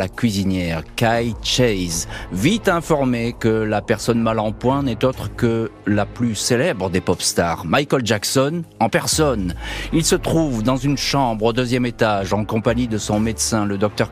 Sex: male